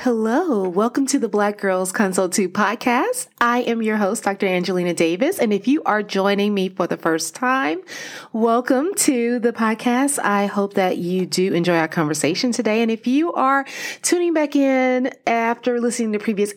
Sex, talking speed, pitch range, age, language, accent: female, 180 wpm, 185-260 Hz, 30-49, English, American